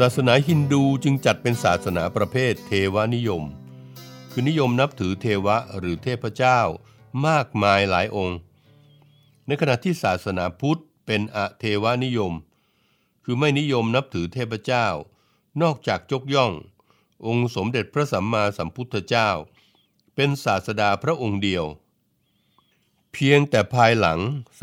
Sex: male